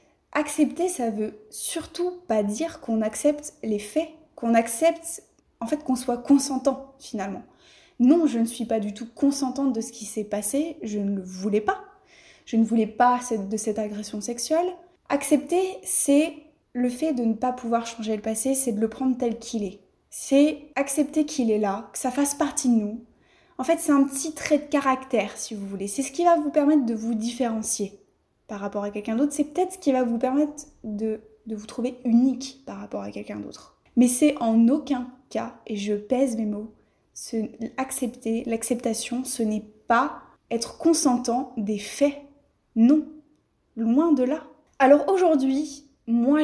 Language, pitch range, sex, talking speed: French, 225-285 Hz, female, 185 wpm